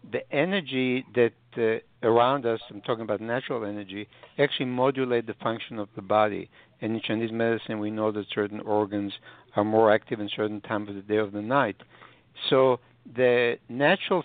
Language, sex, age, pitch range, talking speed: English, male, 60-79, 110-130 Hz, 170 wpm